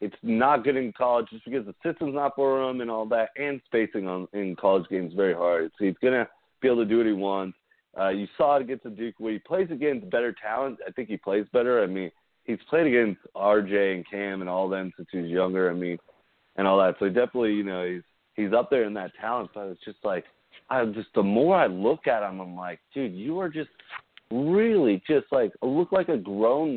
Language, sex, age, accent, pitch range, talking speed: English, male, 30-49, American, 95-120 Hz, 250 wpm